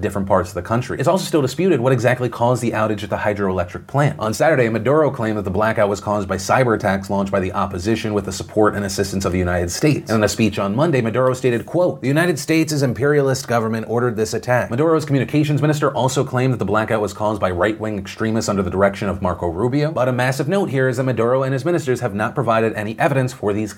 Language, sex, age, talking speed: English, male, 30-49, 245 wpm